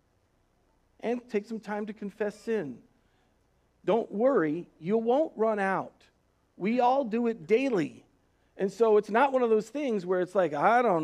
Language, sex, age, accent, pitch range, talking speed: English, male, 40-59, American, 140-195 Hz, 170 wpm